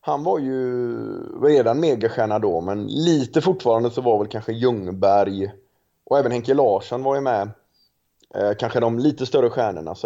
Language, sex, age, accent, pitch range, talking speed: Swedish, male, 30-49, native, 105-145 Hz, 165 wpm